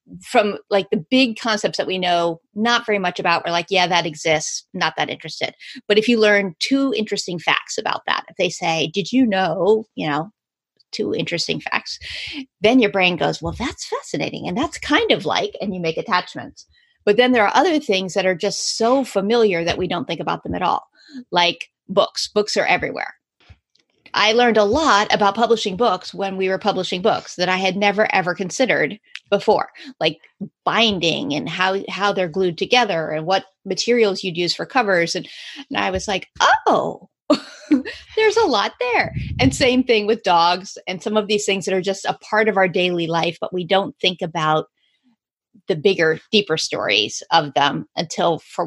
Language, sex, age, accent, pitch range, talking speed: English, female, 30-49, American, 175-225 Hz, 190 wpm